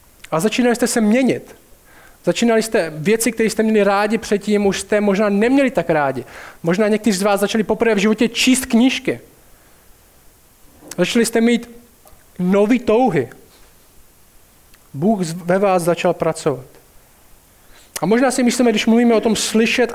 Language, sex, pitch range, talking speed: Czech, male, 170-220 Hz, 145 wpm